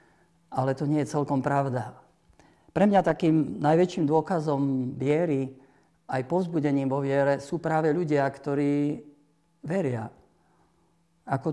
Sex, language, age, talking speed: male, Slovak, 50-69, 115 wpm